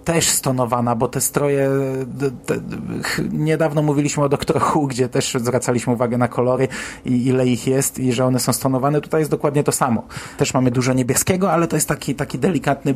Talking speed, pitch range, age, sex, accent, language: 185 wpm, 125-150 Hz, 30-49, male, native, Polish